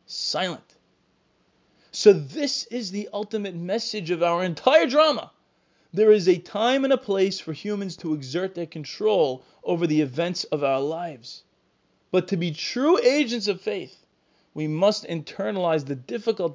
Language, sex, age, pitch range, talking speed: English, male, 20-39, 175-230 Hz, 150 wpm